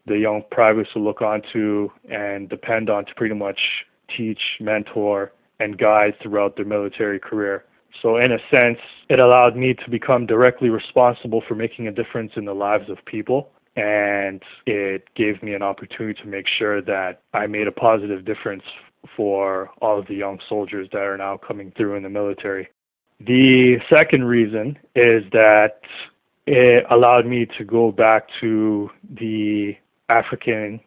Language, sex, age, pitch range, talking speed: English, male, 20-39, 105-120 Hz, 160 wpm